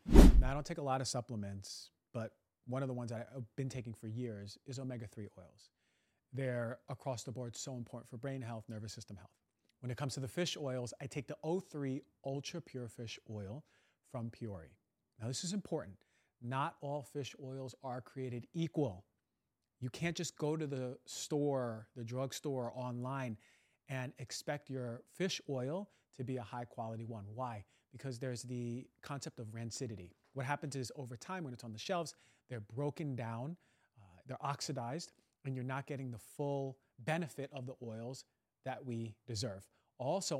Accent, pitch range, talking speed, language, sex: American, 115-140 Hz, 175 wpm, English, male